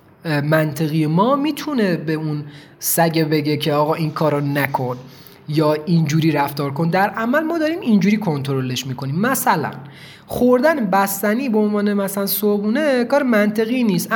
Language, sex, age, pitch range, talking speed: Persian, male, 30-49, 160-230 Hz, 140 wpm